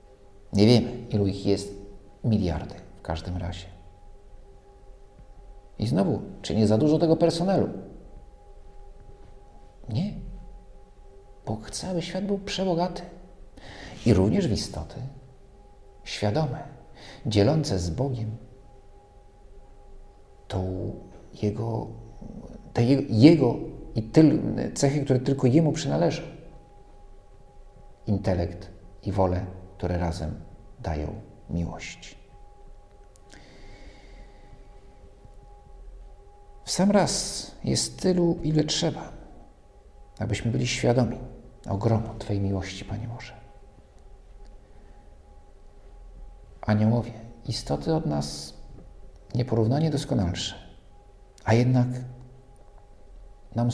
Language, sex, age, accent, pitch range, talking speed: Polish, male, 50-69, native, 100-125 Hz, 85 wpm